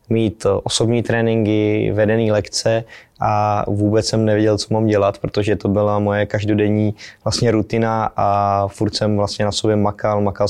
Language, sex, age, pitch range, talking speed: Czech, male, 20-39, 100-110 Hz, 155 wpm